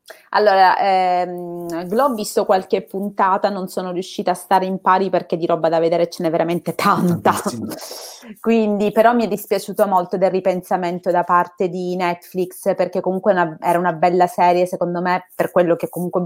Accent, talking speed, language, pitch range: native, 180 wpm, Italian, 175-200 Hz